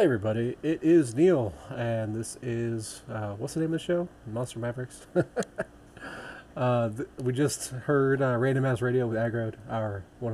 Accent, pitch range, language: American, 110-135 Hz, English